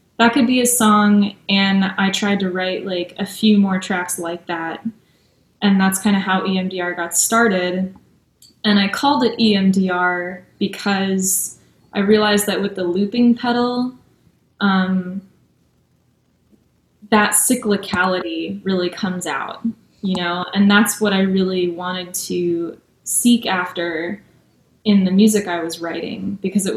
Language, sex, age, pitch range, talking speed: English, female, 10-29, 185-220 Hz, 140 wpm